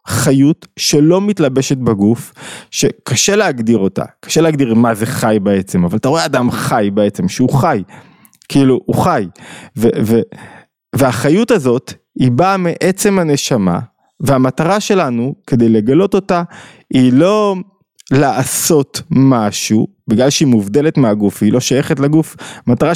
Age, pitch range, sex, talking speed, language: 20-39, 115-150 Hz, male, 130 wpm, Hebrew